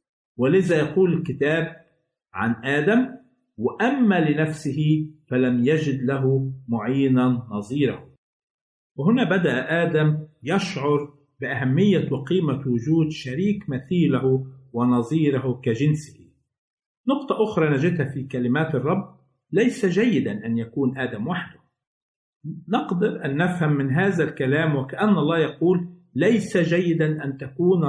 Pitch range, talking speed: 125-170 Hz, 105 wpm